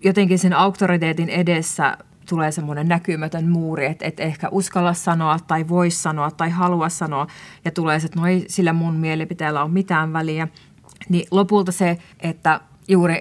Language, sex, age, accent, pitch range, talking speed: Finnish, female, 30-49, native, 160-185 Hz, 160 wpm